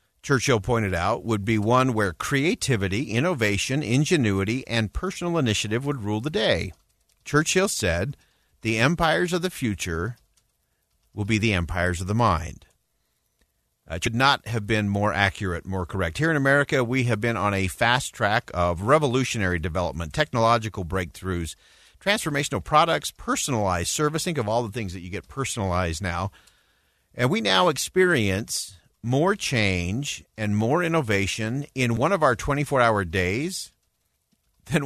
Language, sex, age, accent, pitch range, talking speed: English, male, 50-69, American, 95-135 Hz, 145 wpm